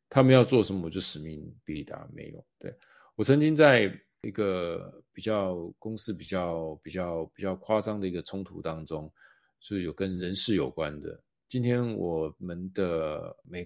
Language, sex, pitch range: Chinese, male, 85-110 Hz